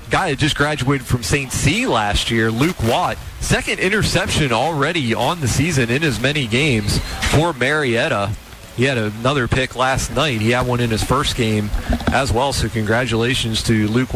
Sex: male